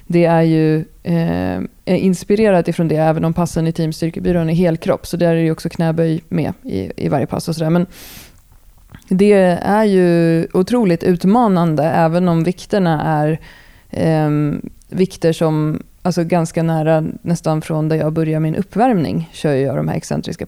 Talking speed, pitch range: 165 wpm, 160-185 Hz